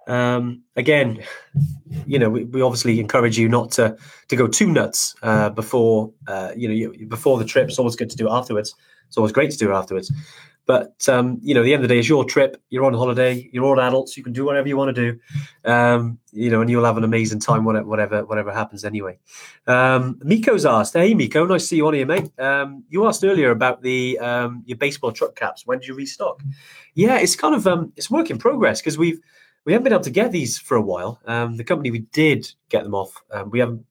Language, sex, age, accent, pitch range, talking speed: English, male, 20-39, British, 115-140 Hz, 245 wpm